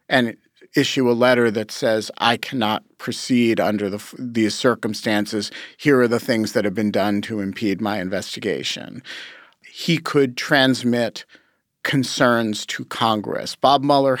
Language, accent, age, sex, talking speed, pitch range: English, American, 40-59, male, 135 wpm, 115-145 Hz